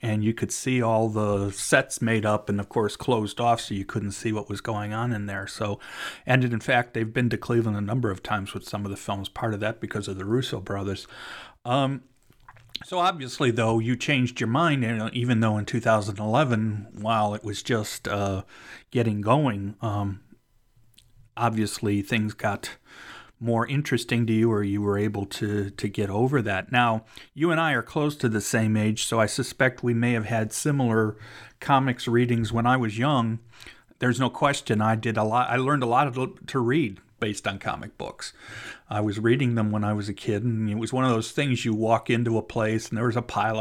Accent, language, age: American, English, 40-59